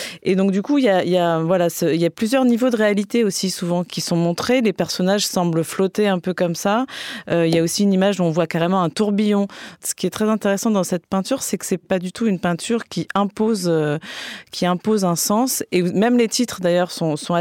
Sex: female